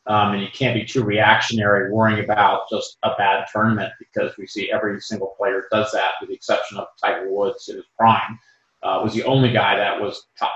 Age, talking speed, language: 40-59, 215 wpm, English